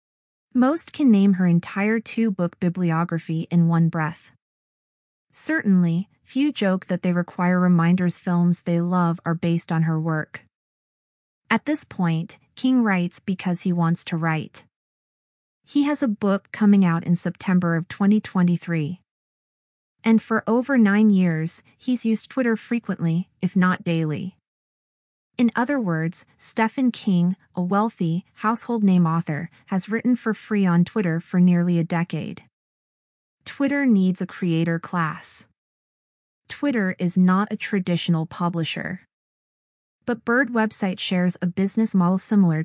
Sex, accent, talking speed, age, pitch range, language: female, American, 135 wpm, 30-49, 170-215 Hz, English